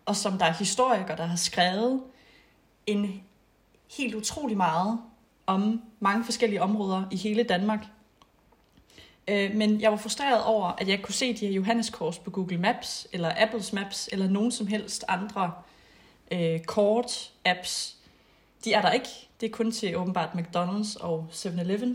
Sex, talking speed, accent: female, 150 wpm, native